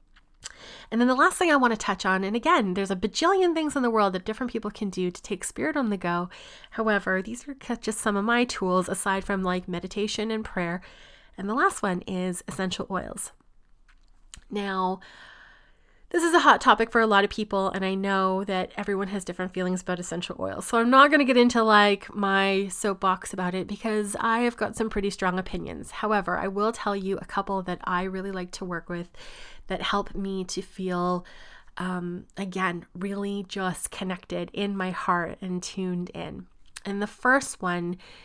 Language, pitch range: English, 185-225 Hz